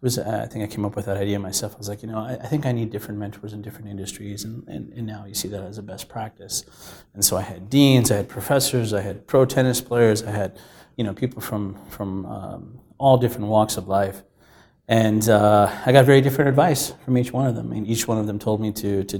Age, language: 30-49, English